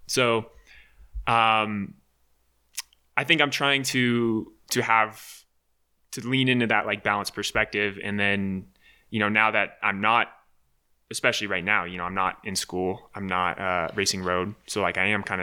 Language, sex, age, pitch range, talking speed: English, male, 20-39, 90-110 Hz, 165 wpm